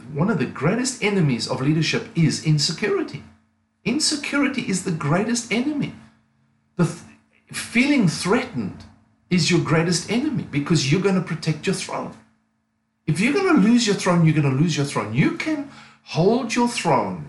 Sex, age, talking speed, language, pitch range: male, 50-69, 160 wpm, English, 120-180 Hz